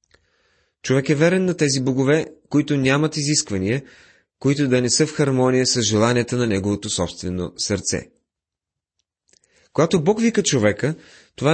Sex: male